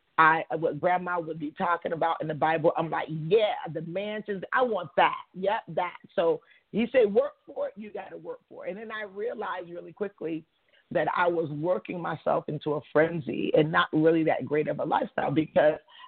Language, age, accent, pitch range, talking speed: English, 40-59, American, 155-200 Hz, 205 wpm